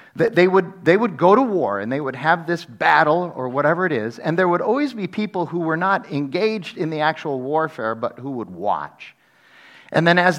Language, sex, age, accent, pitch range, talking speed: English, male, 50-69, American, 145-195 Hz, 215 wpm